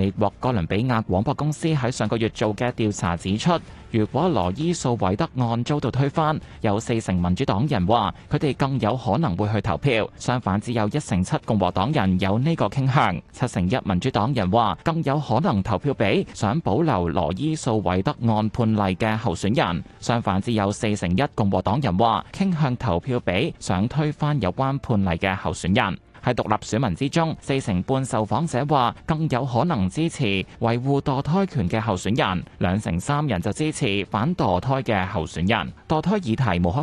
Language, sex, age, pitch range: Chinese, male, 20-39, 100-145 Hz